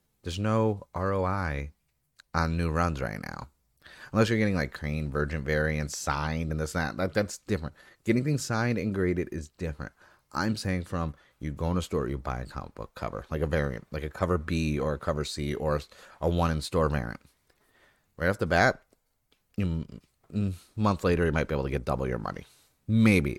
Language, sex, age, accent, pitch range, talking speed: English, male, 30-49, American, 75-95 Hz, 200 wpm